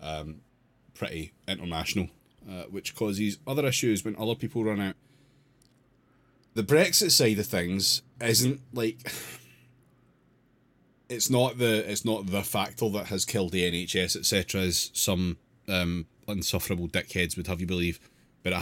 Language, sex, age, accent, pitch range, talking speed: English, male, 30-49, British, 85-110 Hz, 140 wpm